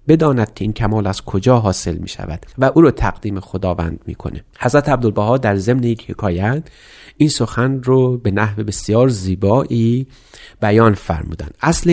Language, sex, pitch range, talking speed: Persian, male, 100-130 Hz, 155 wpm